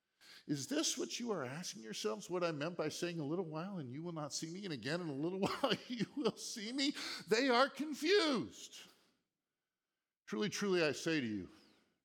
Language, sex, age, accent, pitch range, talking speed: English, male, 50-69, American, 130-185 Hz, 200 wpm